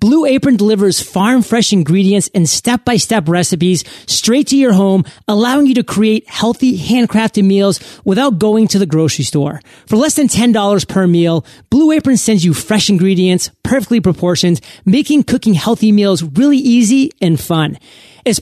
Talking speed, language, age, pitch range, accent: 155 wpm, English, 30-49, 175-235 Hz, American